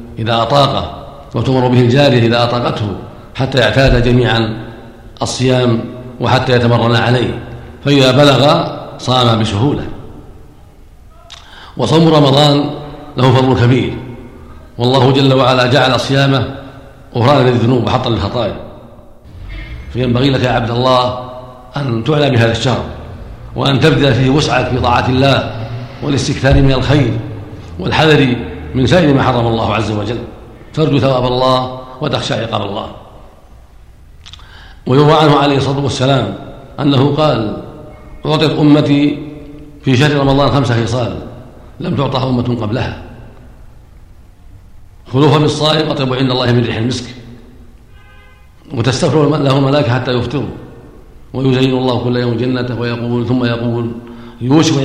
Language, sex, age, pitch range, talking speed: Arabic, male, 50-69, 115-135 Hz, 115 wpm